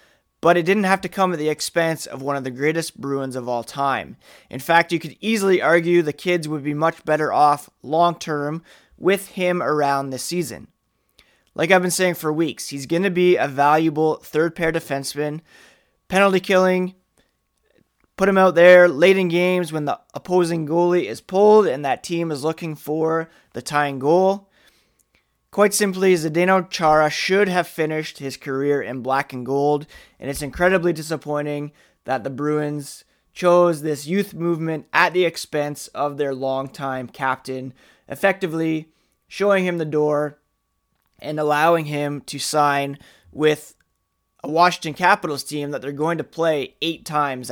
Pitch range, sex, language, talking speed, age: 145-175 Hz, male, English, 160 wpm, 20-39